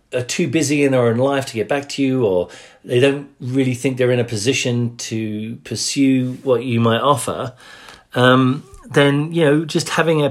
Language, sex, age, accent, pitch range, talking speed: English, male, 40-59, British, 110-145 Hz, 200 wpm